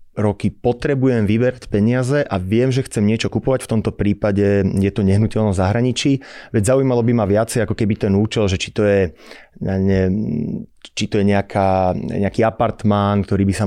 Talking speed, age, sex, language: 160 wpm, 30-49, male, Slovak